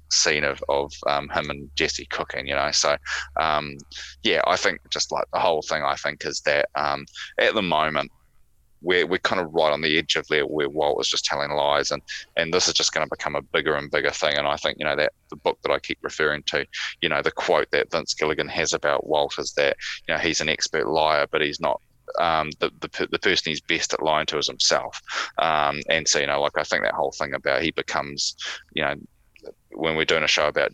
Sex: male